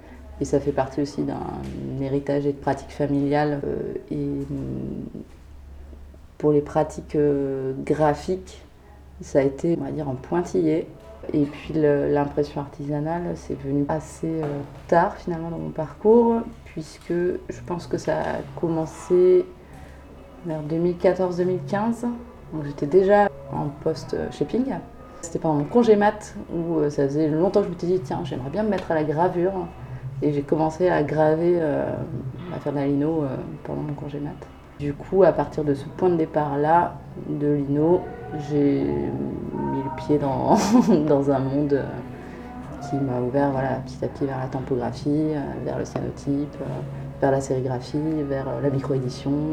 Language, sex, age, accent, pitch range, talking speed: French, female, 30-49, French, 135-165 Hz, 160 wpm